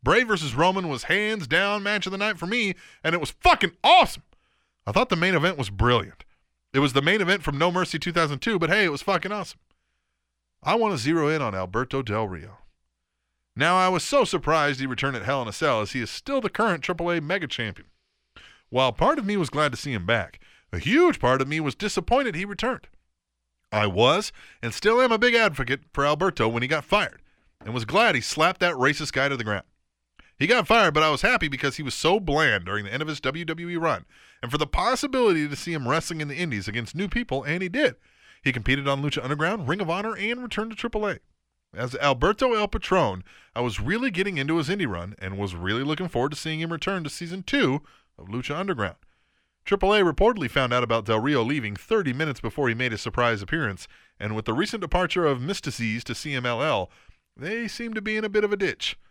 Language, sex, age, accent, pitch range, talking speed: English, male, 30-49, American, 120-195 Hz, 225 wpm